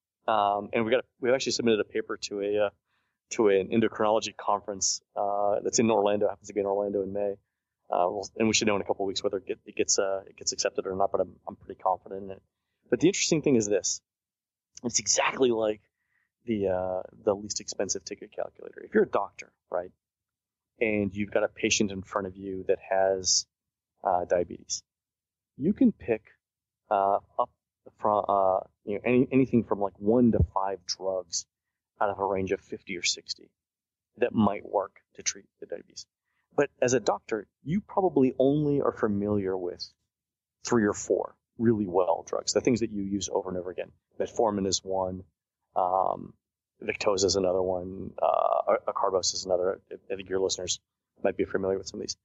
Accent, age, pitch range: American, 30-49, 95-110 Hz